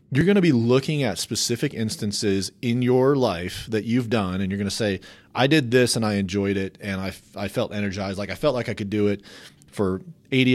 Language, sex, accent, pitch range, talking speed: English, male, American, 100-125 Hz, 235 wpm